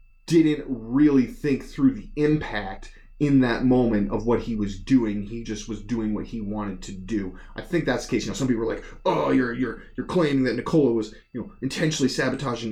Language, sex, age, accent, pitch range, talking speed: English, male, 30-49, American, 110-130 Hz, 215 wpm